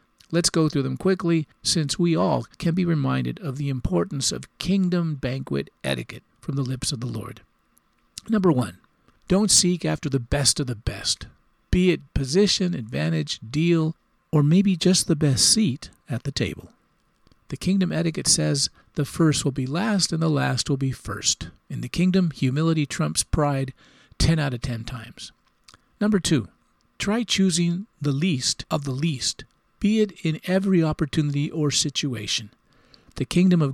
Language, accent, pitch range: English, American, 130-170 Hz